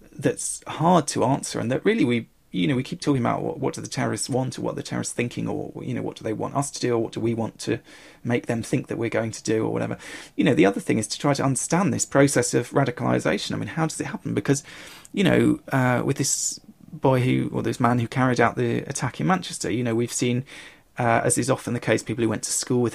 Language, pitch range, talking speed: English, 110-140 Hz, 275 wpm